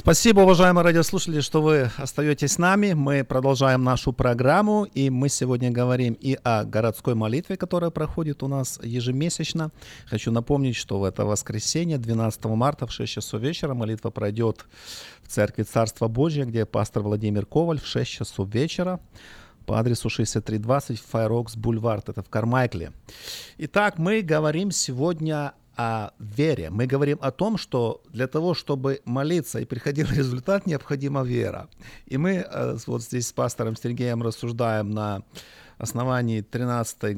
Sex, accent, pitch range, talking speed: male, native, 110-145 Hz, 150 wpm